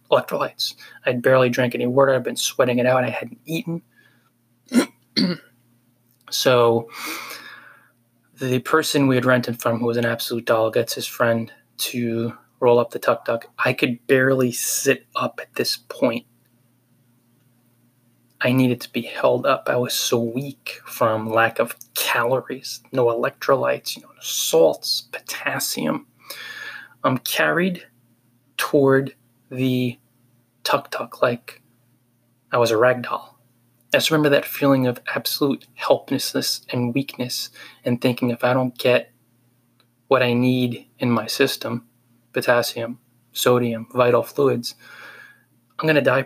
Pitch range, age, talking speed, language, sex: 120-125 Hz, 20-39, 135 wpm, English, male